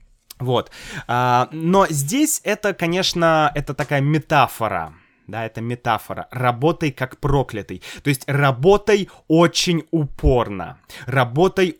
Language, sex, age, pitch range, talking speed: Russian, male, 20-39, 130-175 Hz, 100 wpm